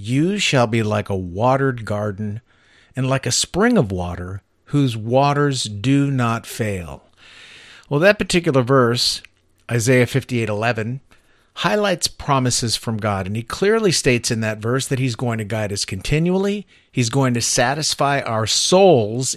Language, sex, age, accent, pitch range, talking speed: English, male, 50-69, American, 115-150 Hz, 150 wpm